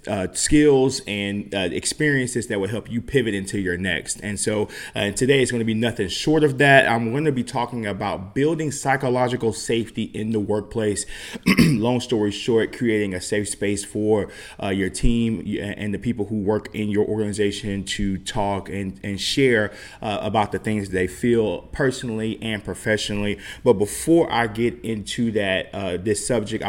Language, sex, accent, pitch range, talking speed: English, male, American, 100-115 Hz, 180 wpm